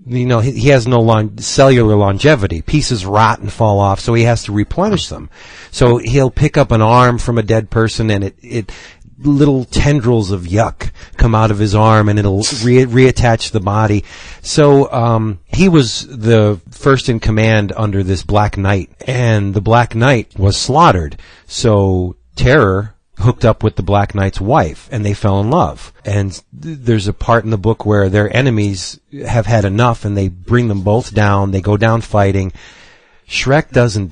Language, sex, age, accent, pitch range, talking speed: English, male, 40-59, American, 100-125 Hz, 180 wpm